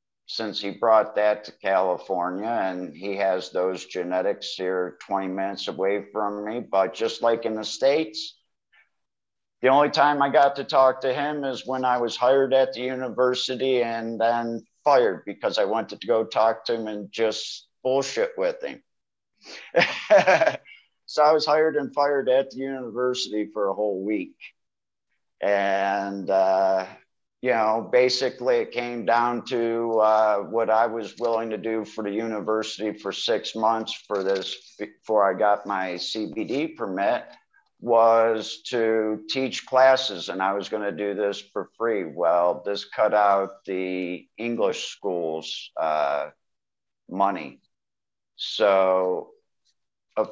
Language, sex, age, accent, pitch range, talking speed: English, male, 50-69, American, 100-125 Hz, 145 wpm